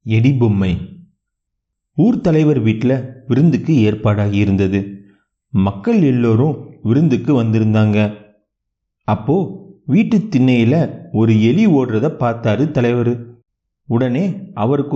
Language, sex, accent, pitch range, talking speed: Tamil, male, native, 110-150 Hz, 85 wpm